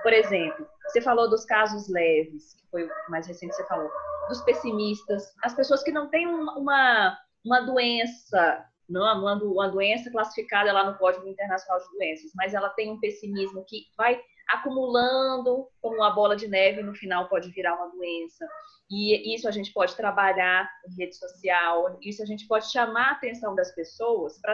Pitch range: 190-260 Hz